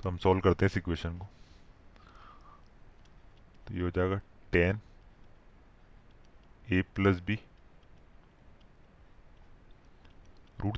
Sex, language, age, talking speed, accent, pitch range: male, Hindi, 30-49, 90 wpm, native, 90-110 Hz